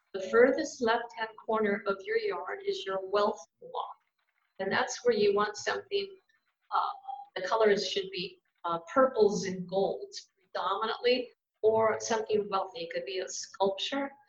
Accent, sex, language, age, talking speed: American, female, English, 50-69, 145 wpm